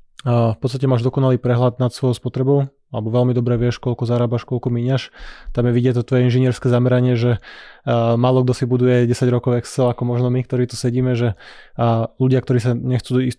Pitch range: 120-130 Hz